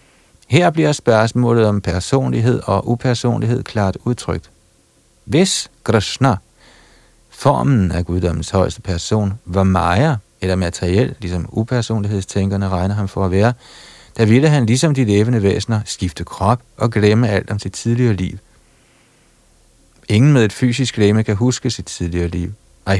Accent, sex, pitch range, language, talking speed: native, male, 95-120 Hz, Danish, 140 wpm